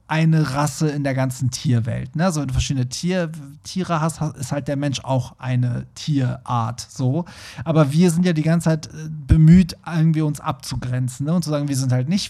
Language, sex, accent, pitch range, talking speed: German, male, German, 130-160 Hz, 175 wpm